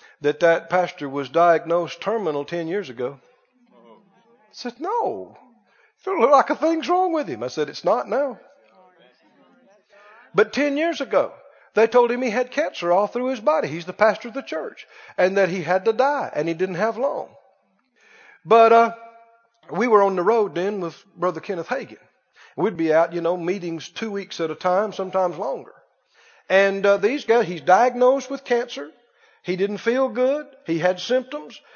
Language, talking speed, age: English, 180 wpm, 50-69